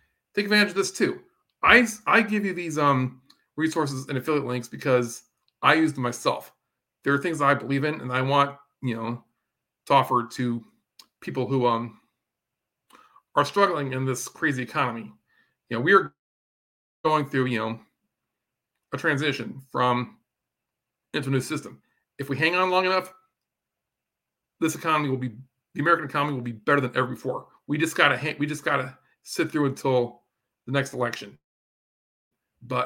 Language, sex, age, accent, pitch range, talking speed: English, male, 40-59, American, 130-175 Hz, 165 wpm